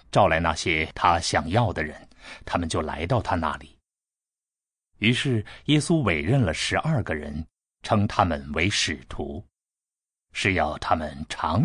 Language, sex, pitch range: Chinese, male, 90-120 Hz